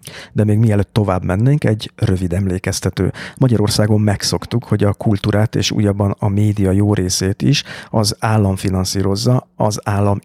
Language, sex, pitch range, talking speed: Hungarian, male, 100-115 Hz, 145 wpm